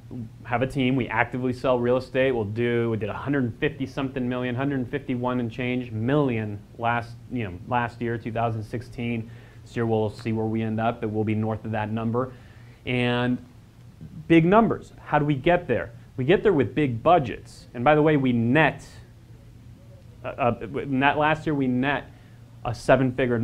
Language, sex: English, male